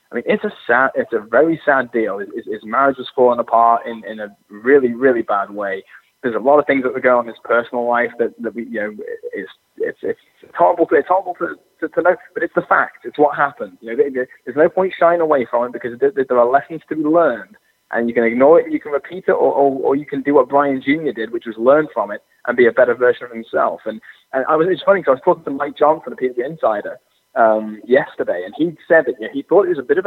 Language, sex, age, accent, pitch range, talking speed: English, male, 20-39, British, 125-195 Hz, 280 wpm